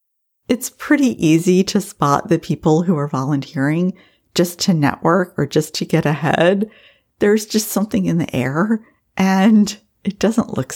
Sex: female